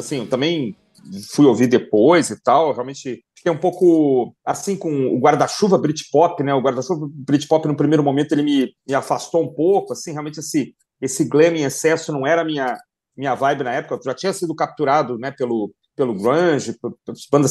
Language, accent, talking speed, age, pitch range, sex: Portuguese, Brazilian, 190 wpm, 40-59, 135-180 Hz, male